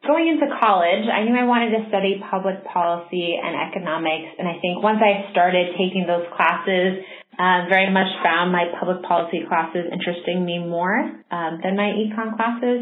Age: 20-39